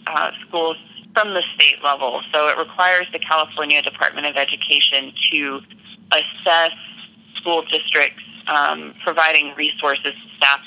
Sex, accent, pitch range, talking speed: female, American, 145-200 Hz, 130 wpm